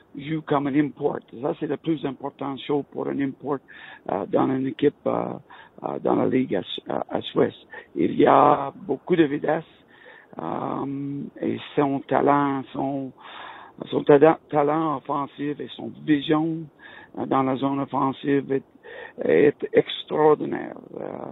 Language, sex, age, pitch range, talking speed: French, male, 60-79, 140-160 Hz, 150 wpm